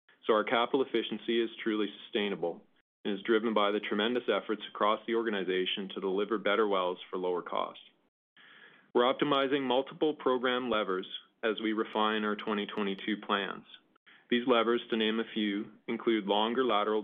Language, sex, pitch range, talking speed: English, male, 105-115 Hz, 155 wpm